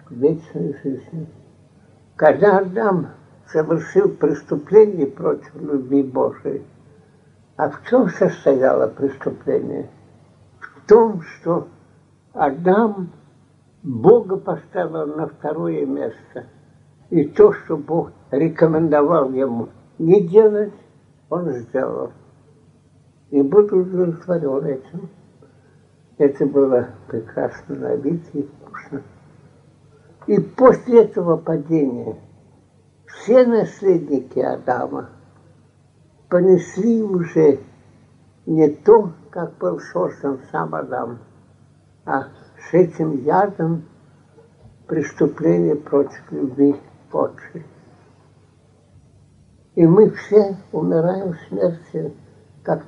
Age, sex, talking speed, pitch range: 60-79, male, 85 wpm, 140-185 Hz